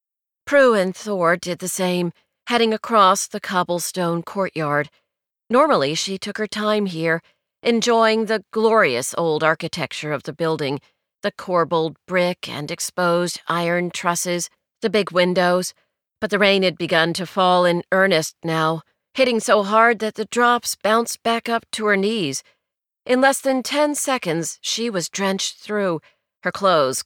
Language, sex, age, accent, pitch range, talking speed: English, female, 40-59, American, 170-220 Hz, 150 wpm